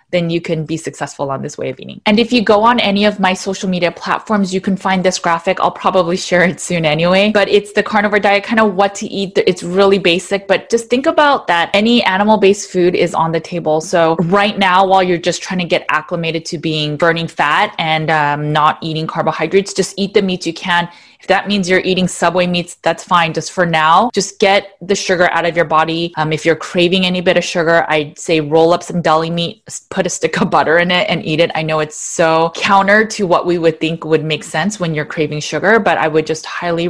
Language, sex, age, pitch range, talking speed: English, female, 20-39, 160-190 Hz, 240 wpm